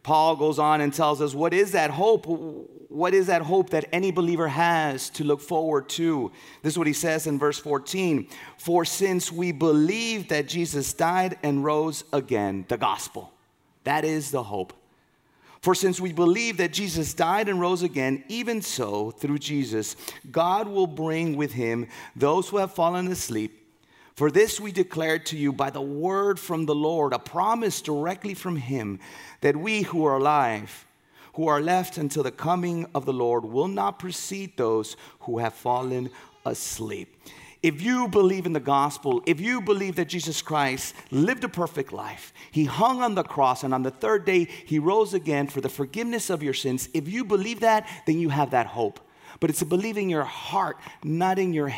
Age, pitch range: 30-49, 145-185 Hz